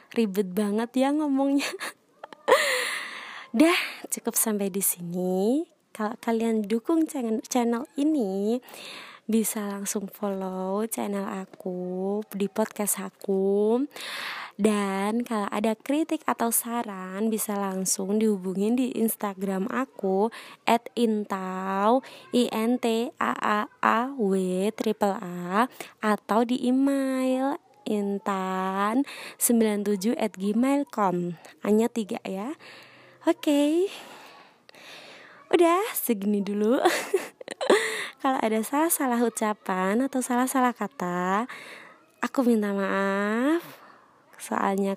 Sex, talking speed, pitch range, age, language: female, 90 wpm, 200-250 Hz, 20-39, Indonesian